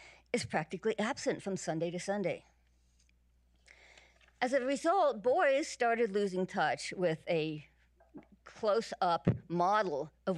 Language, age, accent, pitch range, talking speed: English, 50-69, American, 145-200 Hz, 110 wpm